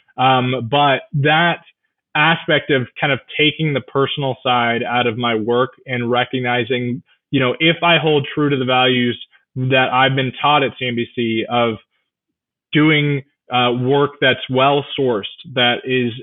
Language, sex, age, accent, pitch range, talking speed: English, male, 20-39, American, 125-145 Hz, 150 wpm